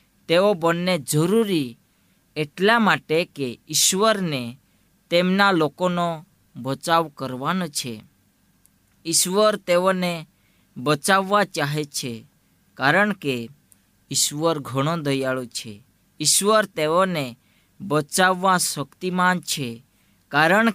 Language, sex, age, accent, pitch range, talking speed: Gujarati, female, 20-39, native, 130-180 Hz, 85 wpm